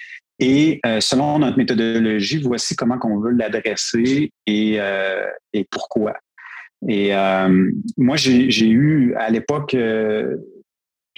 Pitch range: 110-140 Hz